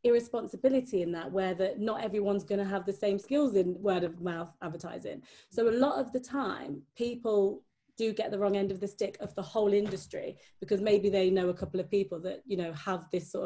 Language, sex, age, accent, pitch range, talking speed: English, female, 30-49, British, 180-220 Hz, 225 wpm